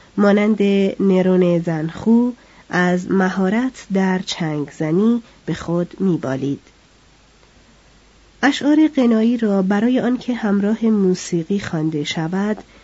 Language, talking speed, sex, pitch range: Persian, 95 wpm, female, 170-220 Hz